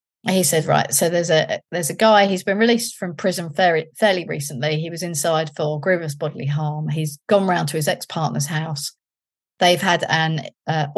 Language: English